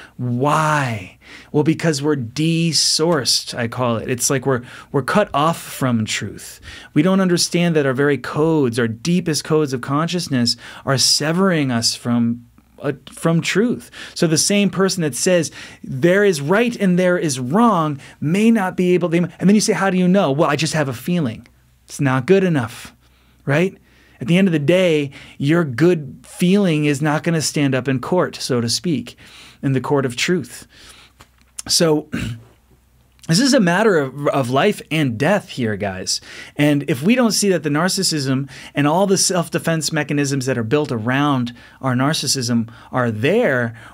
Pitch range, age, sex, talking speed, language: 120-170 Hz, 30-49, male, 175 wpm, English